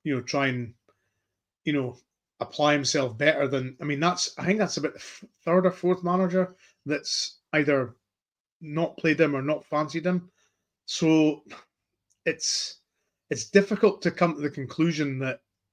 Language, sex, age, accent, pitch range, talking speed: English, male, 30-49, British, 125-150 Hz, 155 wpm